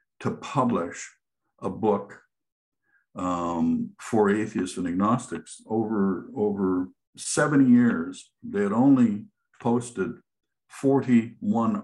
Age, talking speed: 60-79, 90 wpm